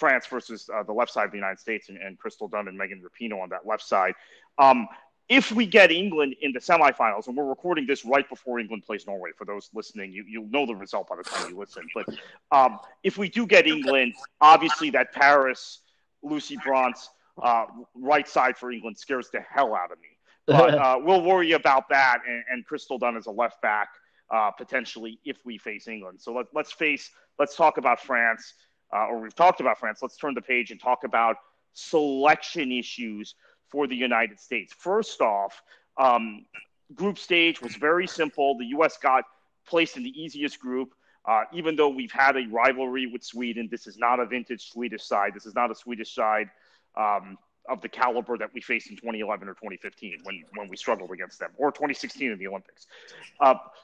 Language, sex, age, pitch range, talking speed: English, male, 30-49, 115-150 Hz, 205 wpm